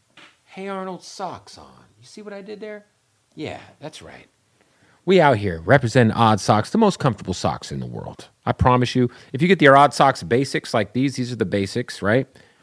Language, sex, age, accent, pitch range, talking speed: English, male, 30-49, American, 105-140 Hz, 205 wpm